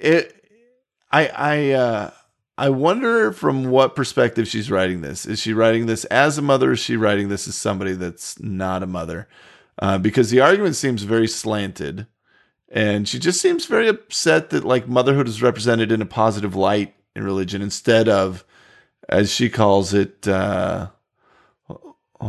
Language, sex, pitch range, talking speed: English, male, 100-125 Hz, 165 wpm